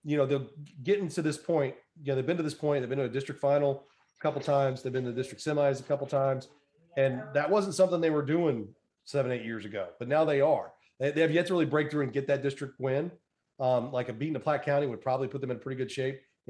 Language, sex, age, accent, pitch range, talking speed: English, male, 30-49, American, 125-150 Hz, 280 wpm